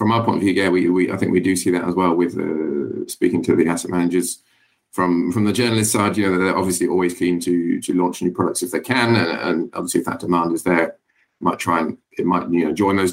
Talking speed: 270 wpm